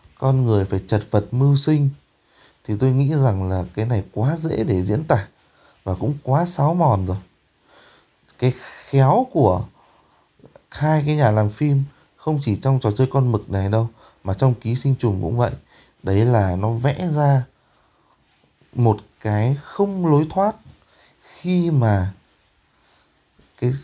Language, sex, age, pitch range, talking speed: Vietnamese, male, 20-39, 100-140 Hz, 155 wpm